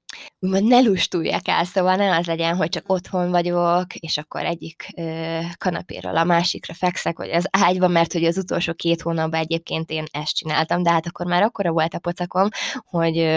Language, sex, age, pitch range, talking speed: Hungarian, female, 20-39, 160-190 Hz, 190 wpm